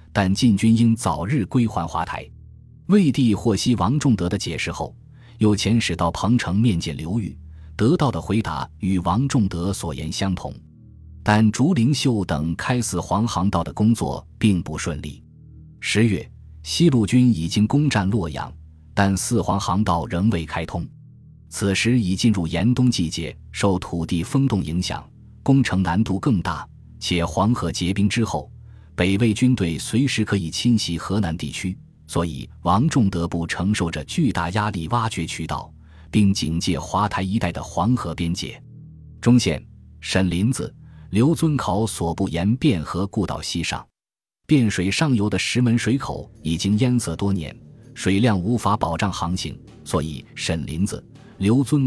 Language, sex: Chinese, male